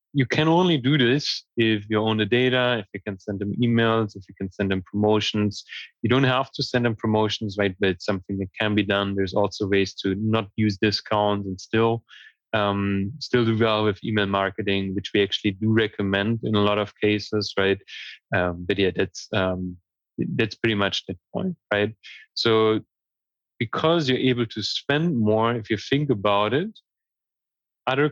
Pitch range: 100-120 Hz